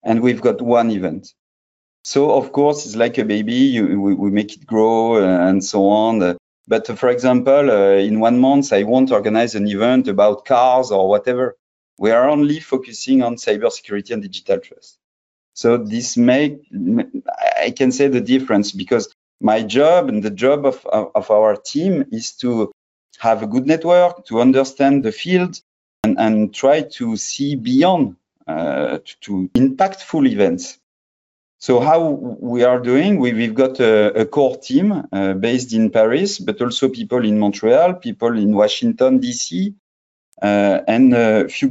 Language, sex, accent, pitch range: English, male, French, 110-165 Hz